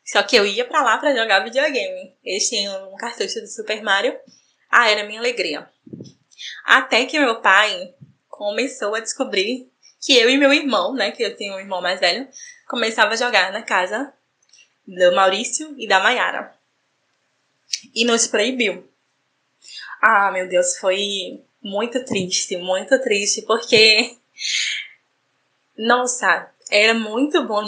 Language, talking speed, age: Portuguese, 145 wpm, 10-29